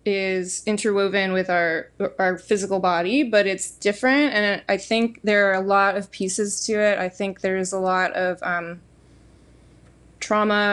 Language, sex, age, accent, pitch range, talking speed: English, female, 20-39, American, 185-210 Hz, 160 wpm